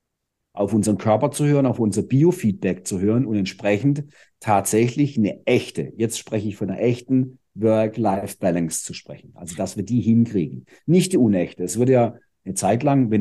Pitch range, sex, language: 105-135 Hz, male, English